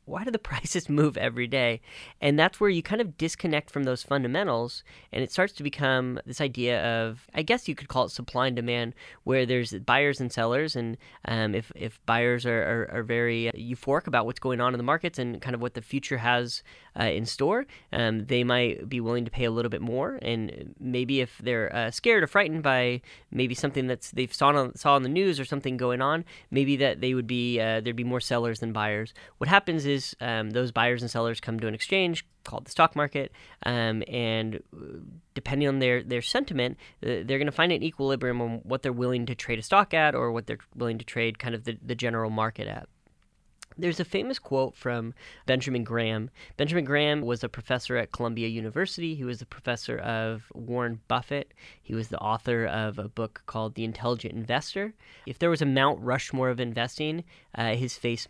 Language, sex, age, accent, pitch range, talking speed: English, female, 10-29, American, 115-140 Hz, 215 wpm